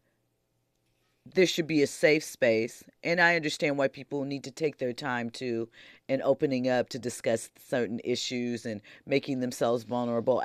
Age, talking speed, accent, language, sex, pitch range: 40-59, 160 wpm, American, English, female, 120-150 Hz